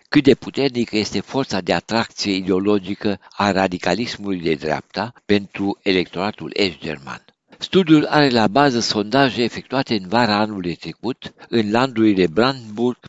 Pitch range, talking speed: 95-120 Hz, 130 wpm